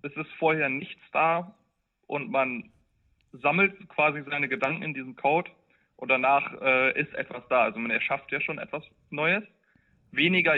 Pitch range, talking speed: 135-170 Hz, 160 wpm